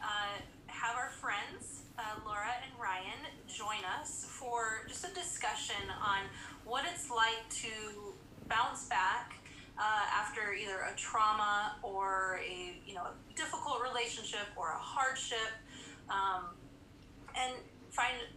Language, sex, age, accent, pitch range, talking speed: English, female, 20-39, American, 200-255 Hz, 125 wpm